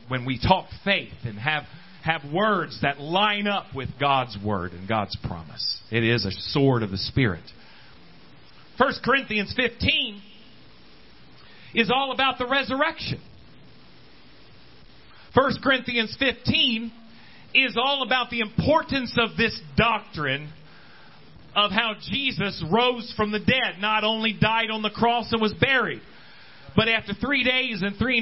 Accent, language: American, English